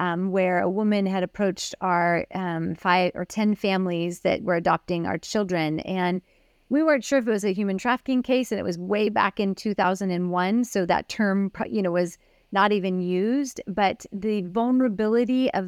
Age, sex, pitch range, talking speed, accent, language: 30-49, female, 180-215 Hz, 185 wpm, American, English